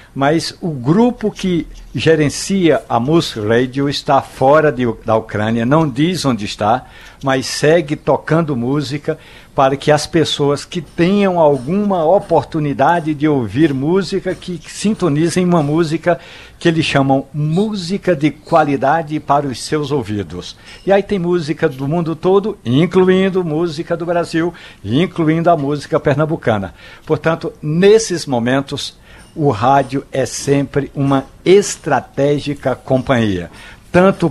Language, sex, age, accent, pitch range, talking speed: Portuguese, male, 60-79, Brazilian, 125-160 Hz, 125 wpm